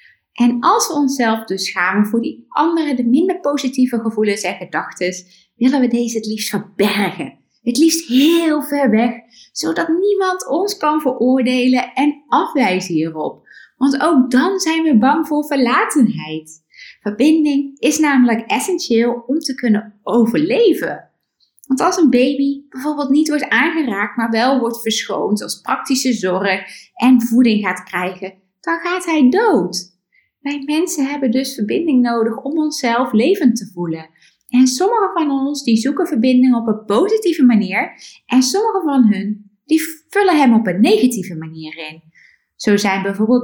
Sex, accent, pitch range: female, Dutch, 210-295 Hz